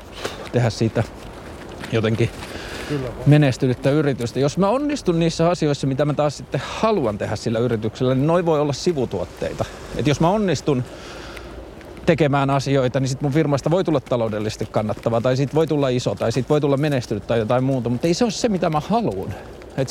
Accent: native